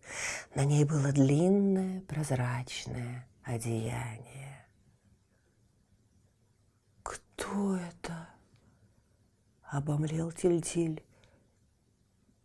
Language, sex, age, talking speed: Russian, female, 40-59, 55 wpm